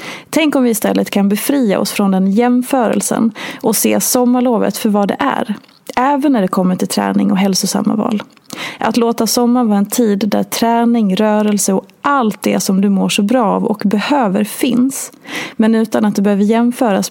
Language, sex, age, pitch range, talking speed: Swedish, female, 30-49, 200-250 Hz, 185 wpm